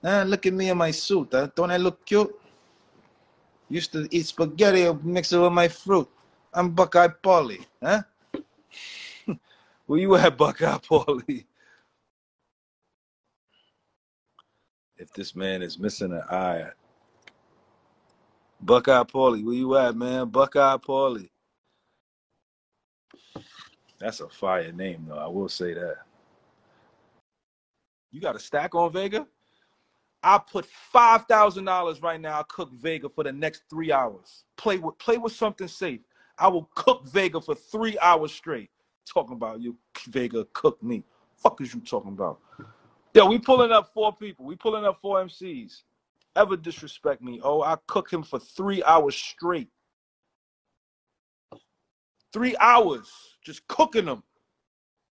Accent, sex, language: American, male, English